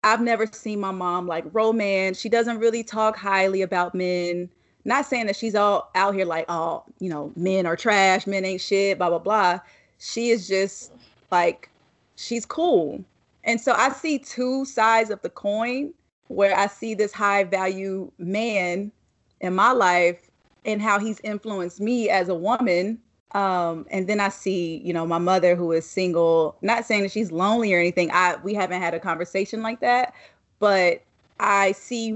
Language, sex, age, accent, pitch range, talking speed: English, female, 30-49, American, 185-225 Hz, 180 wpm